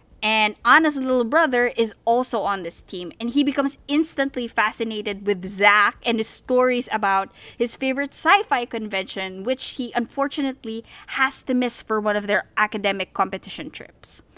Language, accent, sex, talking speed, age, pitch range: English, Filipino, female, 155 wpm, 20-39, 215-275 Hz